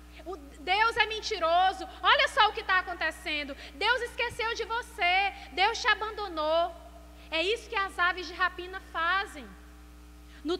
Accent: Brazilian